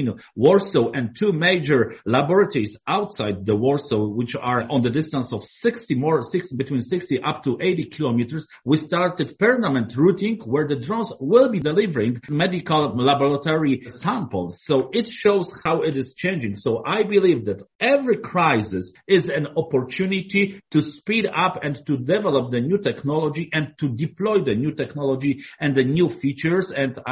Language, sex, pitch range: English, male, 130-180 Hz